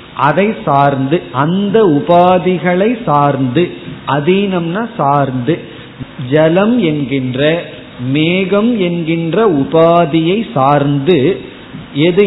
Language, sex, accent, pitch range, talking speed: Tamil, male, native, 145-185 Hz, 70 wpm